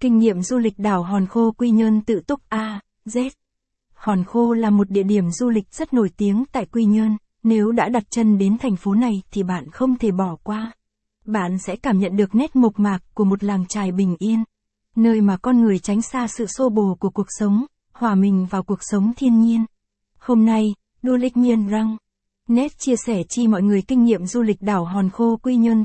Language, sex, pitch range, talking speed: Vietnamese, female, 200-235 Hz, 220 wpm